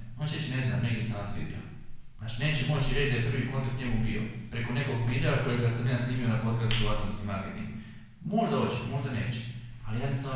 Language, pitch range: Croatian, 115-130 Hz